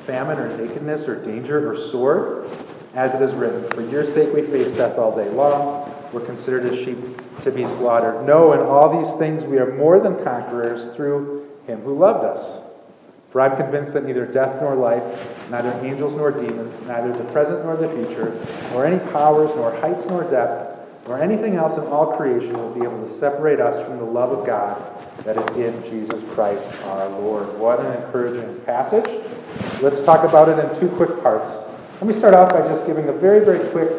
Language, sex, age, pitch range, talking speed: English, male, 30-49, 120-160 Hz, 200 wpm